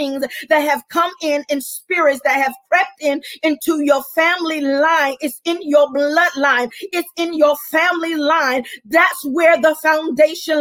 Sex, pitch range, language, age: female, 300-350 Hz, English, 40-59